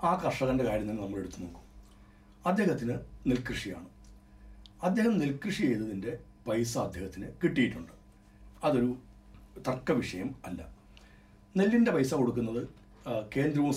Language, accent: Malayalam, native